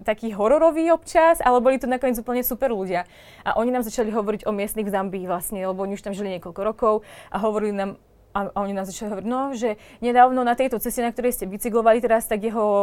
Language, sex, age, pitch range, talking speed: Slovak, female, 20-39, 200-240 Hz, 225 wpm